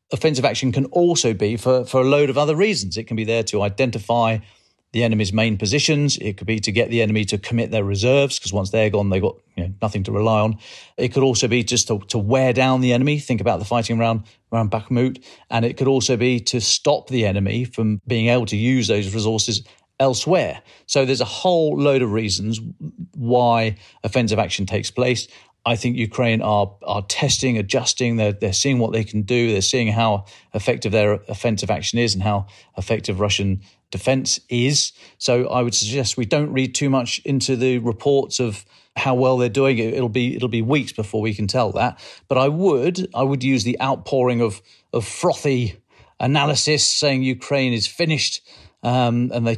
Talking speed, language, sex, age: 200 wpm, English, male, 40-59